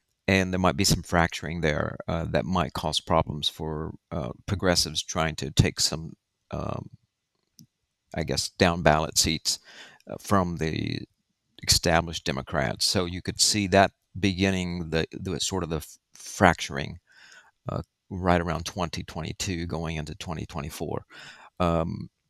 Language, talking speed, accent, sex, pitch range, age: English, 125 wpm, American, male, 85-100 Hz, 50-69